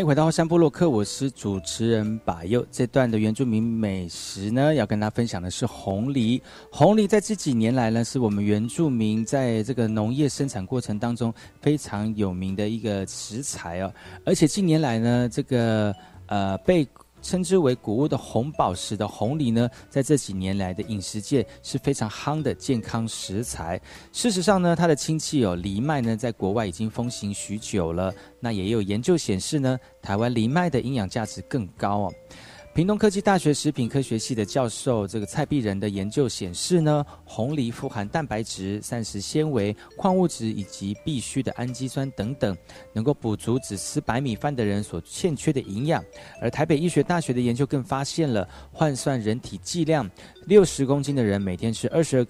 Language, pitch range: Chinese, 105-145 Hz